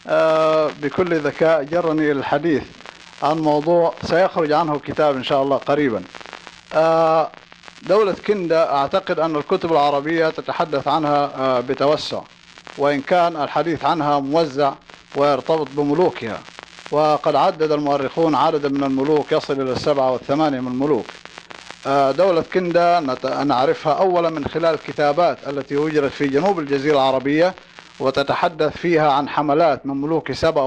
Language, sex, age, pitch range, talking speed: English, male, 50-69, 140-165 Hz, 120 wpm